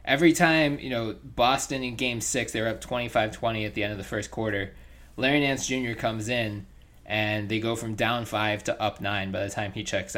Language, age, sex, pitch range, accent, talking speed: English, 20-39, male, 100-115 Hz, American, 225 wpm